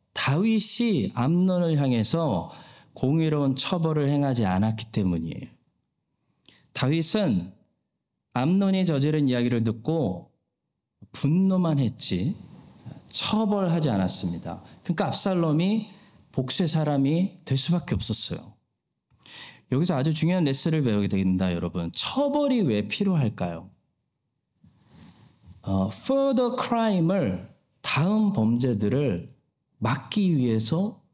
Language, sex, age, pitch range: Korean, male, 40-59, 120-185 Hz